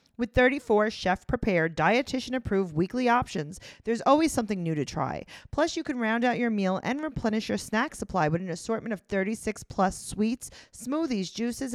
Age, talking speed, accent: 40-59, 170 wpm, American